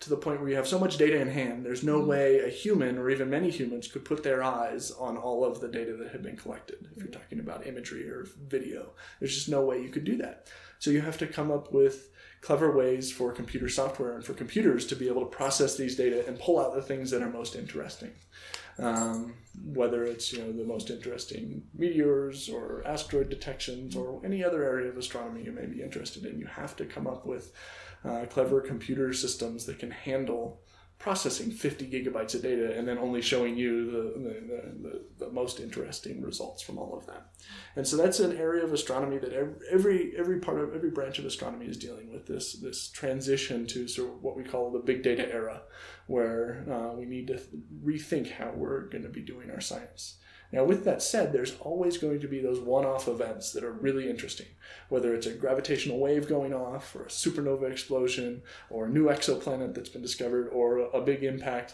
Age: 30-49